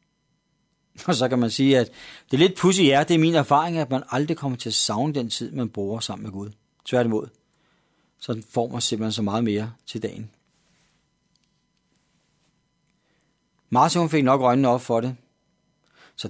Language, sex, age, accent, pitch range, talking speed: Danish, male, 40-59, native, 120-170 Hz, 175 wpm